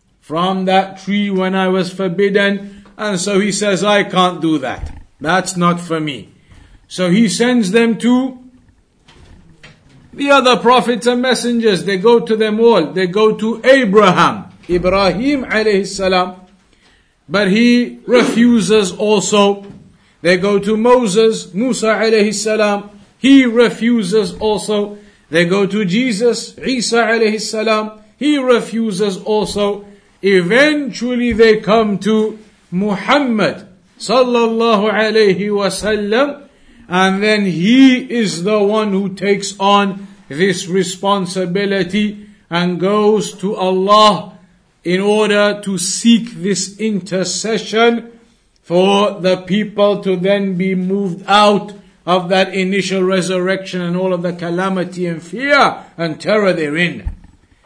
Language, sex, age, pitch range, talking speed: English, male, 50-69, 185-220 Hz, 115 wpm